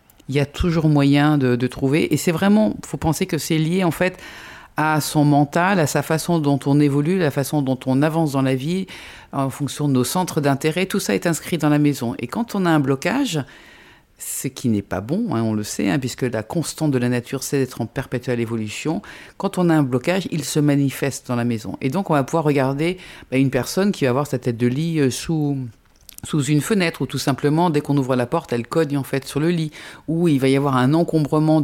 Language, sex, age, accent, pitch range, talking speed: French, female, 50-69, French, 130-165 Hz, 245 wpm